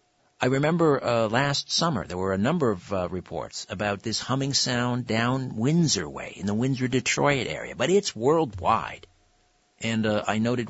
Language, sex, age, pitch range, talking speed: English, male, 50-69, 100-130 Hz, 175 wpm